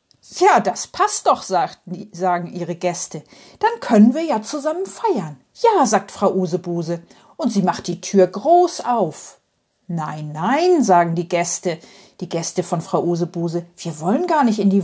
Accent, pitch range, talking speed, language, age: German, 175-285 Hz, 165 wpm, German, 50-69